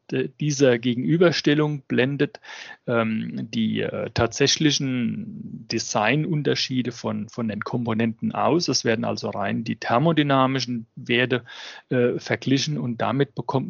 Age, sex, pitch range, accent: 40-59, male, 115-130 Hz, German